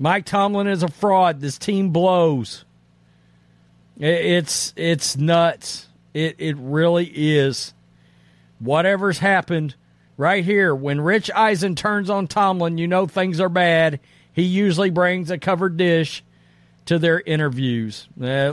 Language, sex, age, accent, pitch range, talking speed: English, male, 50-69, American, 125-185 Hz, 130 wpm